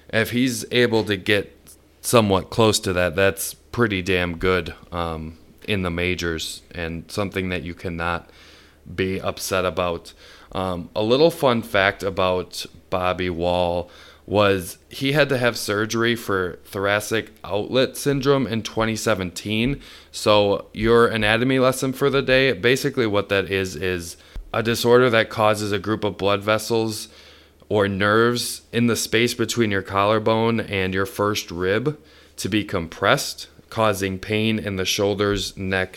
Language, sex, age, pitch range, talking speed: English, male, 20-39, 90-110 Hz, 145 wpm